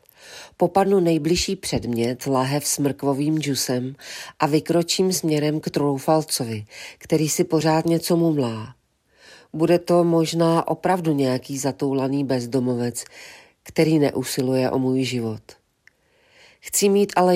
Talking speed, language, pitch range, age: 110 wpm, Czech, 130-165 Hz, 40-59